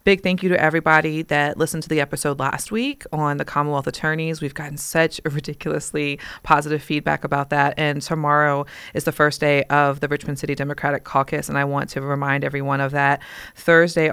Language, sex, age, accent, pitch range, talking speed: English, female, 30-49, American, 140-155 Hz, 190 wpm